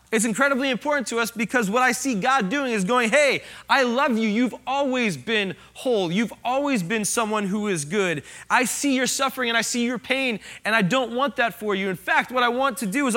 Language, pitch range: English, 165-260 Hz